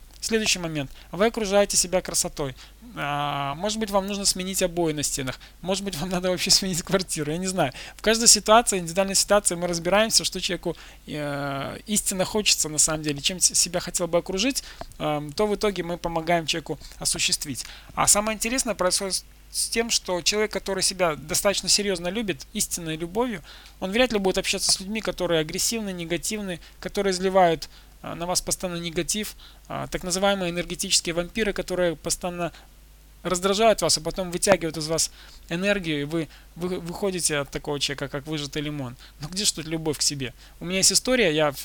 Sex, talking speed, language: male, 170 wpm, Russian